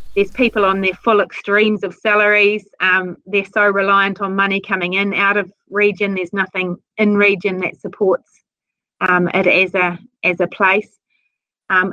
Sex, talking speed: female, 165 wpm